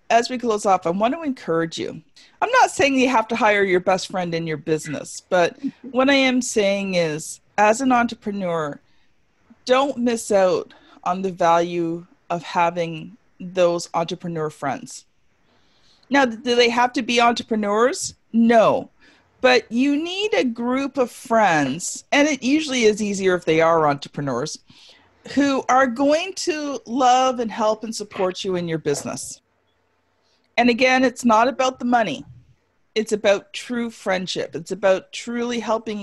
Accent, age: American, 40-59